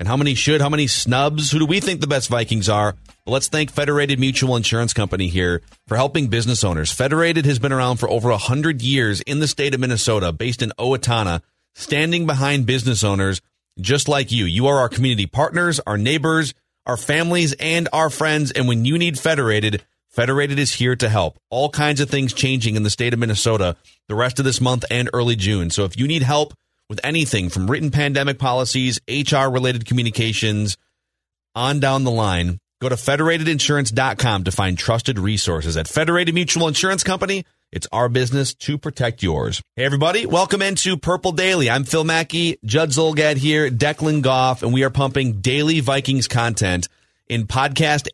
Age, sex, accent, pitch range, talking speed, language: 30-49, male, American, 115-150 Hz, 185 wpm, English